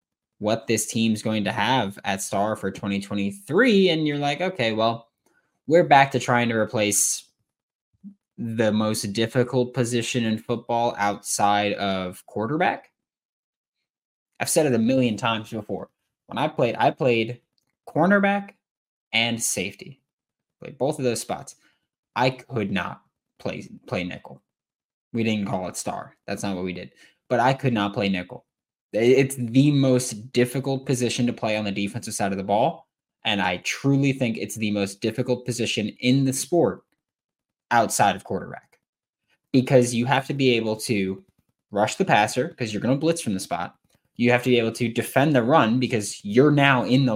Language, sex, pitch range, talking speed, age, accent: English, male, 105-130 Hz, 170 wpm, 10-29, American